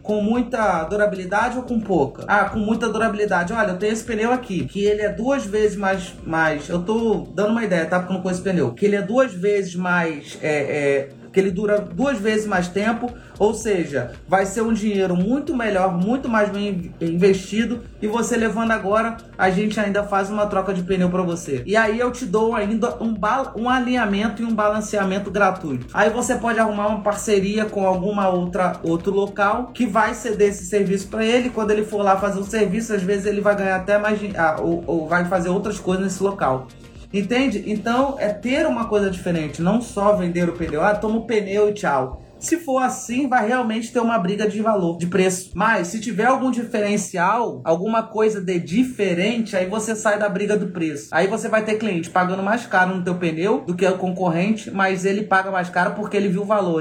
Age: 30-49